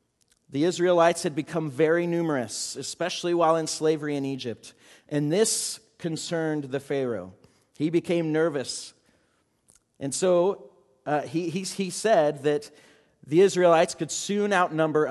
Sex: male